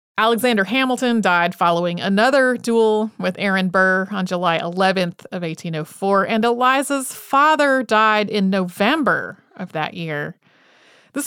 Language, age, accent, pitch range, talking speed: English, 30-49, American, 195-255 Hz, 130 wpm